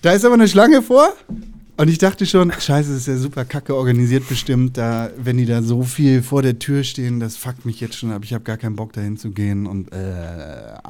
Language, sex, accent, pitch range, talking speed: German, male, German, 105-135 Hz, 235 wpm